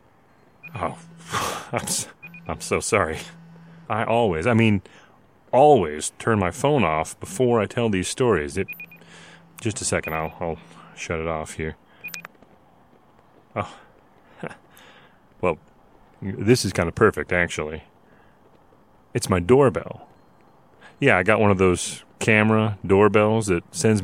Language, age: English, 30-49